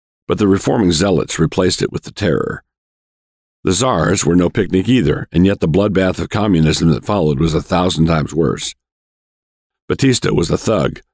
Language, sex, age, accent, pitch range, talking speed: English, male, 50-69, American, 75-95 Hz, 170 wpm